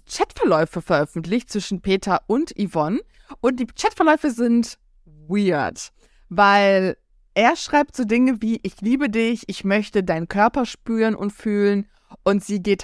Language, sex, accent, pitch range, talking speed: German, female, German, 175-235 Hz, 140 wpm